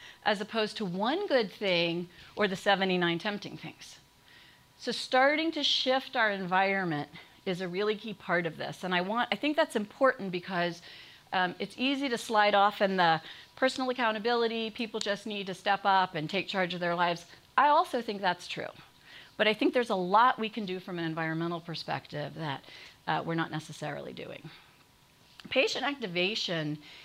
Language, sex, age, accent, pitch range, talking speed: English, female, 40-59, American, 185-240 Hz, 180 wpm